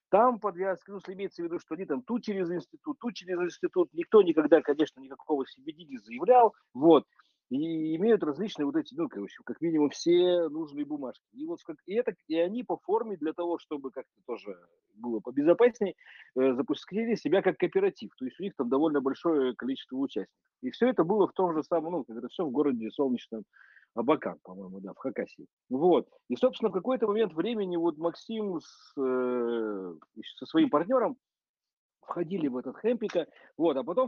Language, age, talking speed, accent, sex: Russian, 40-59, 185 wpm, native, male